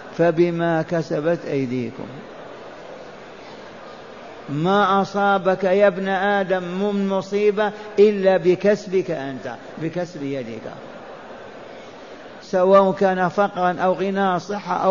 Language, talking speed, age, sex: Arabic, 85 wpm, 50-69, male